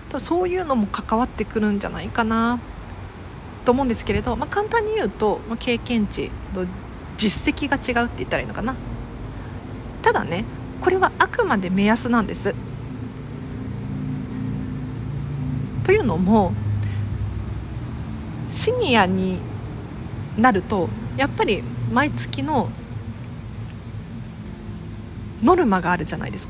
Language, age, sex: Japanese, 40-59, female